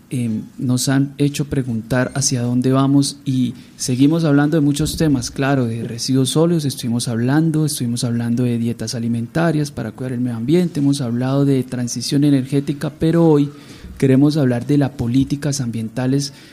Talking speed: 155 wpm